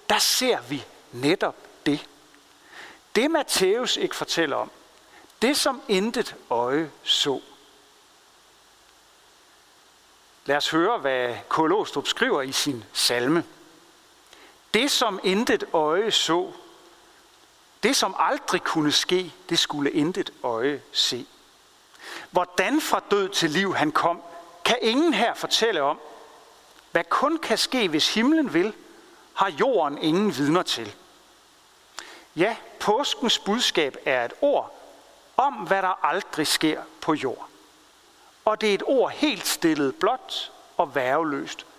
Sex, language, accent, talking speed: male, Danish, native, 125 wpm